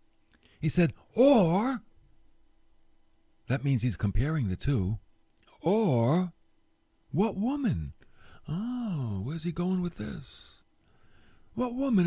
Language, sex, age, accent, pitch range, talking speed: English, male, 50-69, American, 110-170 Hz, 100 wpm